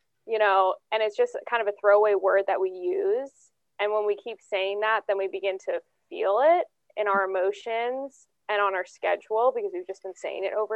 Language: English